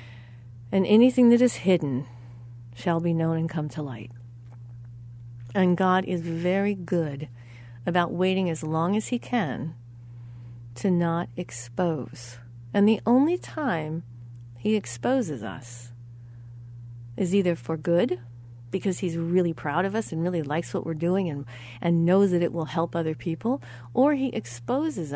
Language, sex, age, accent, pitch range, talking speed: English, female, 40-59, American, 120-200 Hz, 150 wpm